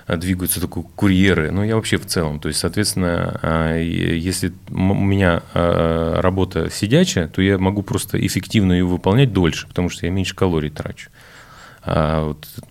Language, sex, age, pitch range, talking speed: Russian, male, 30-49, 80-105 Hz, 150 wpm